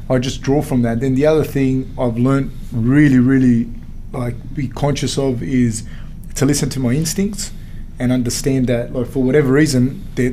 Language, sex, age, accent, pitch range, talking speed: English, male, 20-39, Australian, 120-135 Hz, 180 wpm